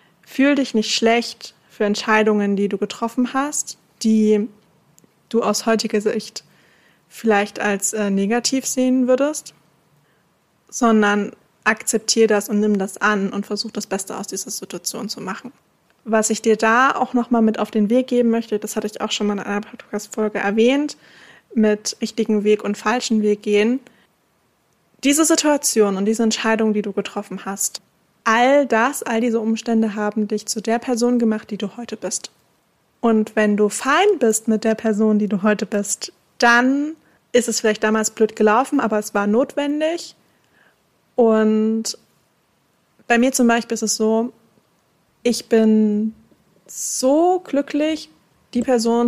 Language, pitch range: German, 210-240 Hz